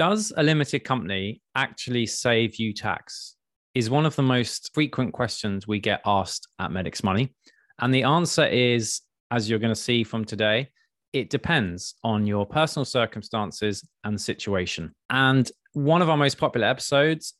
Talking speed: 160 wpm